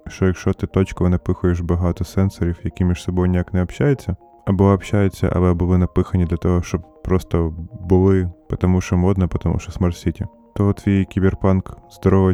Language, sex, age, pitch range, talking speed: Ukrainian, male, 20-39, 85-100 Hz, 165 wpm